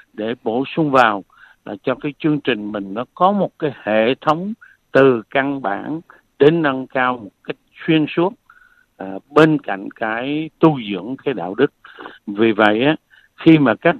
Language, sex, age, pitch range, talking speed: Vietnamese, male, 60-79, 115-160 Hz, 170 wpm